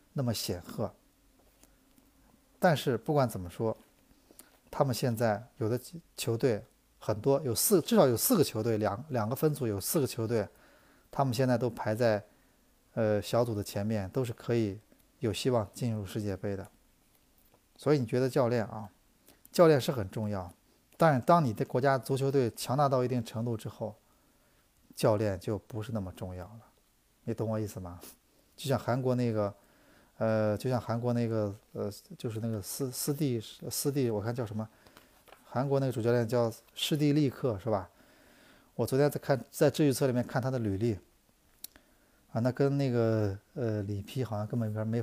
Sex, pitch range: male, 105-130 Hz